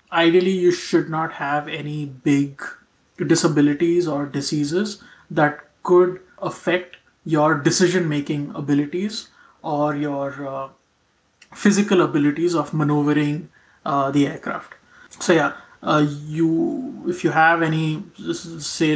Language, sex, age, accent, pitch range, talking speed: English, male, 20-39, Indian, 145-165 Hz, 110 wpm